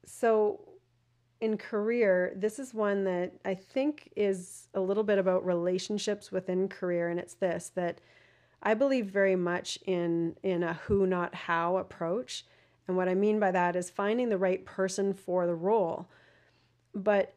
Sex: female